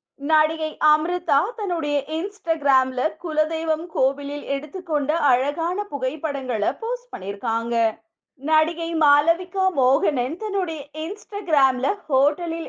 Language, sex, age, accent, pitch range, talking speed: Tamil, female, 20-39, native, 270-360 Hz, 70 wpm